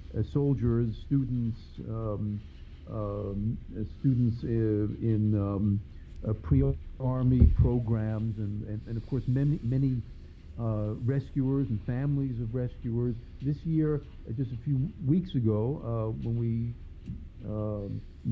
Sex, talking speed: male, 120 wpm